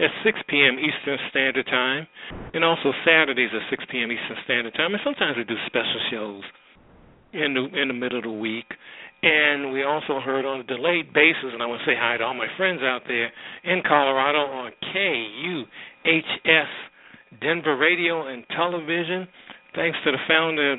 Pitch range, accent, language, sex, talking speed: 130-160 Hz, American, English, male, 180 wpm